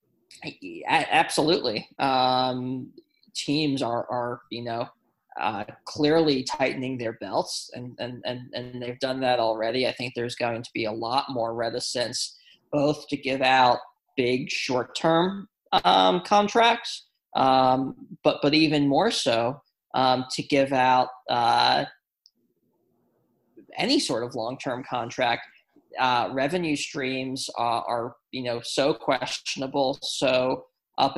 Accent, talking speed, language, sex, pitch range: American, 135 wpm, English, male, 125-150 Hz